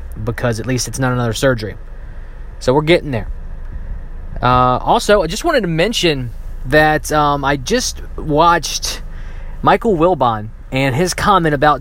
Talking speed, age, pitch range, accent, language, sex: 145 wpm, 20-39, 120-170 Hz, American, English, male